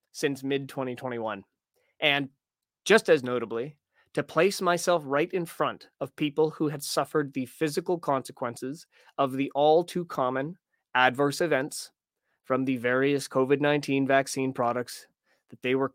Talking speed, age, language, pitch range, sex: 130 wpm, 20-39, English, 135-170 Hz, male